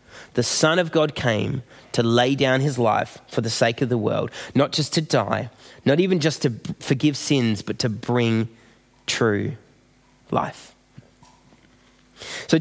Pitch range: 125-180 Hz